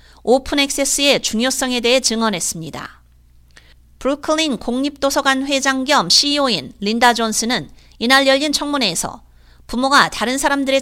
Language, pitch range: Korean, 215-280 Hz